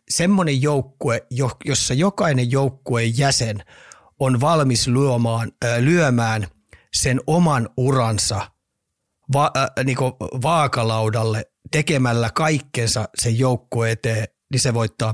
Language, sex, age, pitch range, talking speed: Finnish, male, 30-49, 115-140 Hz, 100 wpm